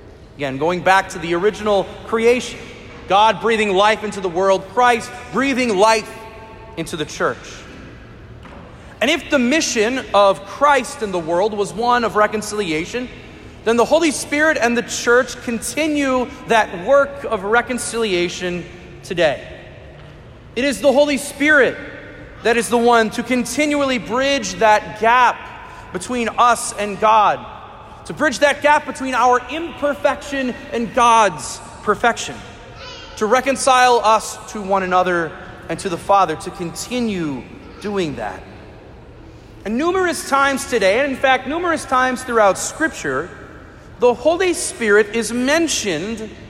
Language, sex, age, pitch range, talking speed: English, male, 40-59, 205-275 Hz, 135 wpm